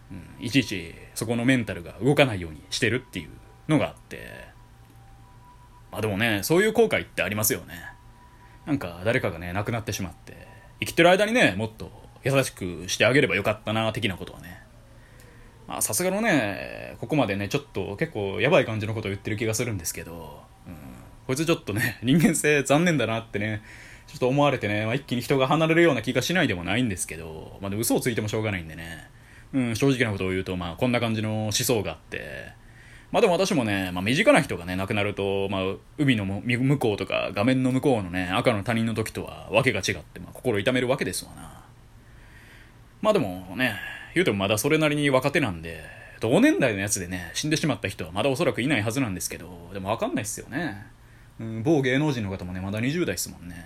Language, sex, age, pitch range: Japanese, male, 20-39, 100-130 Hz